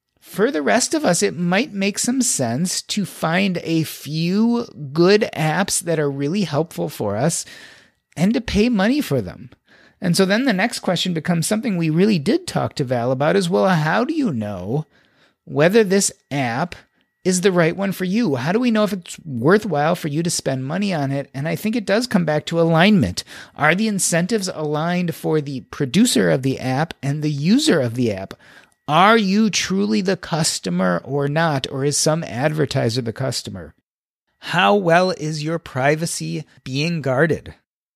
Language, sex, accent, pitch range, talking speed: English, male, American, 145-200 Hz, 185 wpm